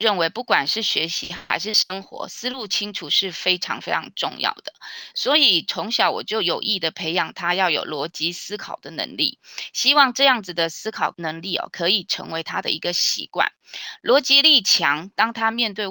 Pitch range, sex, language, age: 175-245 Hz, female, Chinese, 20-39